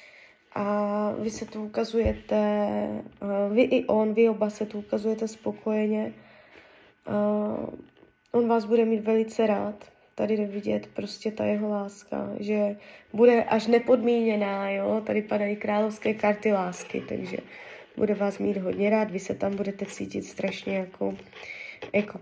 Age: 20-39